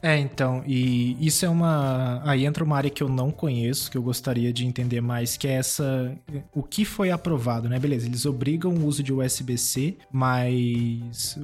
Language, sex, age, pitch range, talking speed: Portuguese, male, 20-39, 125-150 Hz, 190 wpm